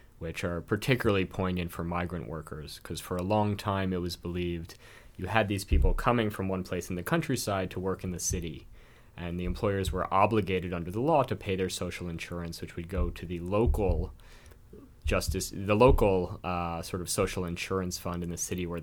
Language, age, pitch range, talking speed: English, 30-49, 85-100 Hz, 200 wpm